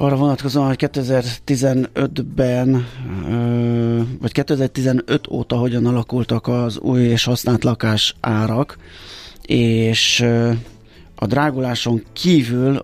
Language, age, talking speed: Hungarian, 30-49, 90 wpm